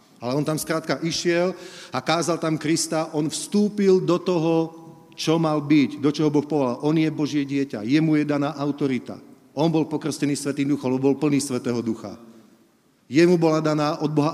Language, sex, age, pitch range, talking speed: Slovak, male, 40-59, 130-155 Hz, 180 wpm